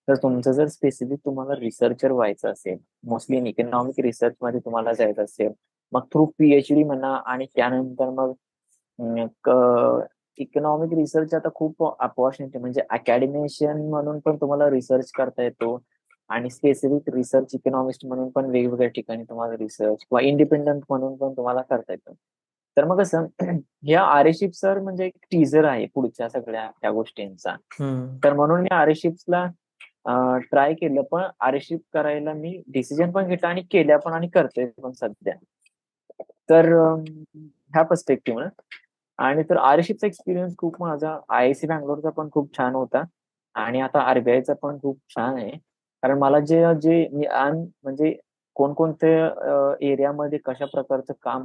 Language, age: Marathi, 20-39